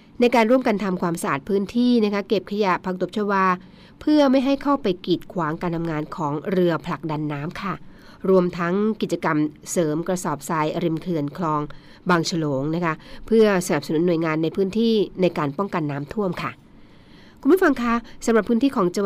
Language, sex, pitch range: Thai, female, 165-210 Hz